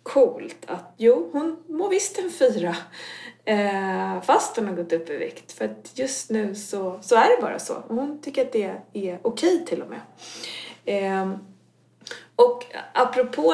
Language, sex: Swedish, female